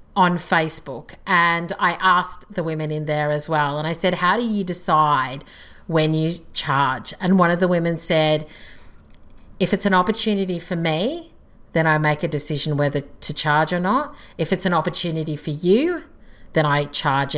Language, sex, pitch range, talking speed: English, female, 150-180 Hz, 180 wpm